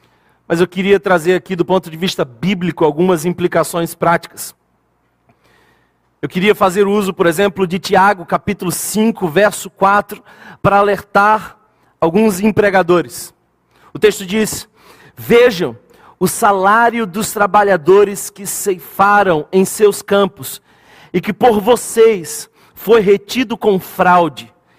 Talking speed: 120 wpm